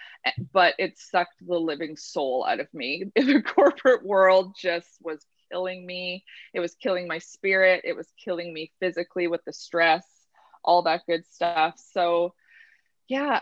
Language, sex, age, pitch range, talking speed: English, female, 20-39, 165-200 Hz, 155 wpm